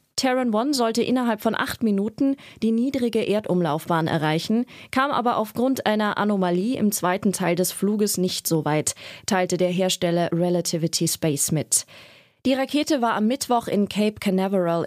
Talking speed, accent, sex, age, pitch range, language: 155 wpm, German, female, 20-39, 175-230 Hz, German